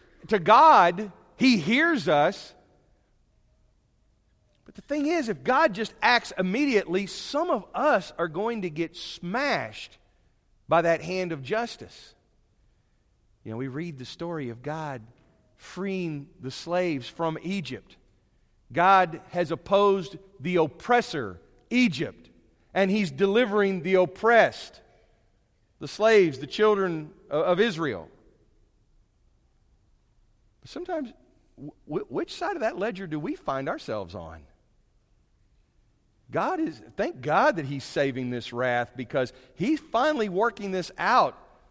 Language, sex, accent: English, male, American